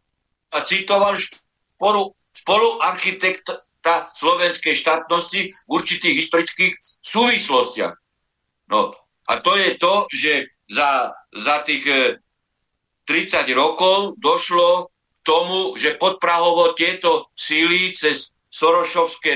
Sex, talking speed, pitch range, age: male, 95 wpm, 155-230 Hz, 60-79